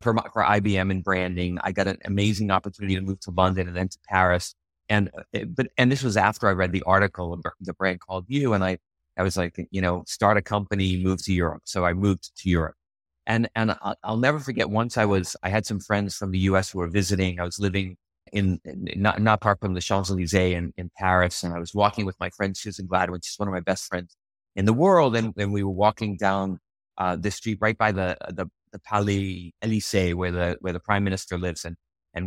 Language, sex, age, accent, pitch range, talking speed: English, male, 30-49, American, 90-110 Hz, 235 wpm